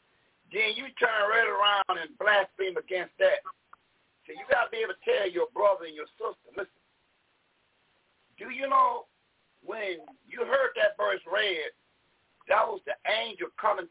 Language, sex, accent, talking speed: English, male, American, 160 wpm